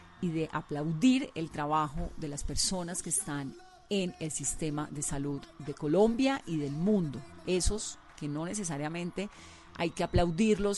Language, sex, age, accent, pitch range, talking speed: Spanish, female, 40-59, Colombian, 145-190 Hz, 150 wpm